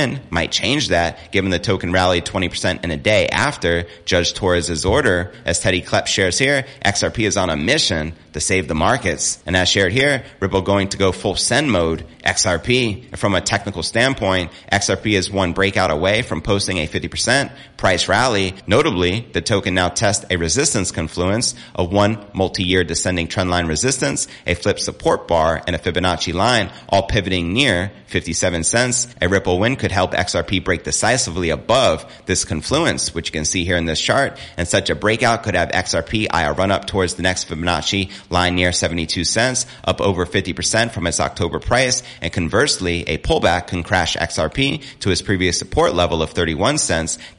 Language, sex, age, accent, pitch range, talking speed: English, male, 30-49, American, 85-105 Hz, 175 wpm